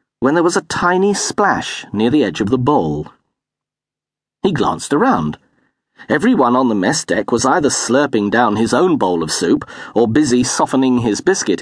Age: 40-59